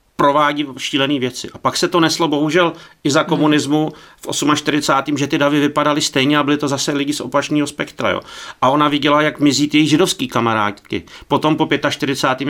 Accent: native